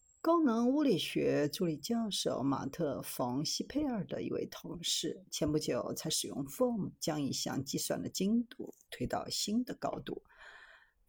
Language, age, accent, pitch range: Chinese, 50-69, native, 170-260 Hz